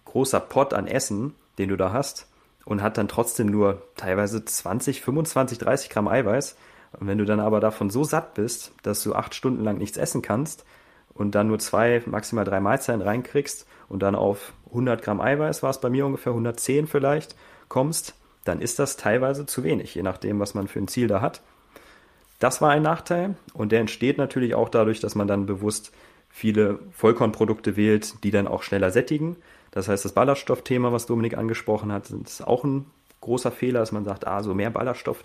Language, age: German, 30-49